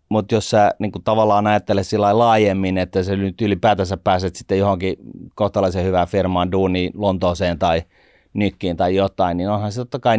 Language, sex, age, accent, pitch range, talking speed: Finnish, male, 30-49, native, 90-105 Hz, 160 wpm